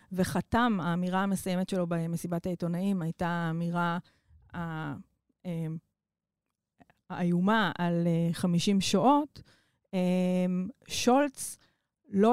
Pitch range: 180-230 Hz